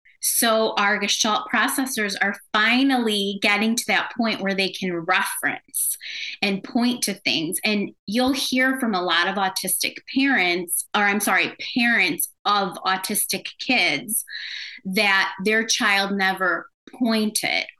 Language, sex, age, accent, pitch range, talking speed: English, female, 20-39, American, 185-225 Hz, 130 wpm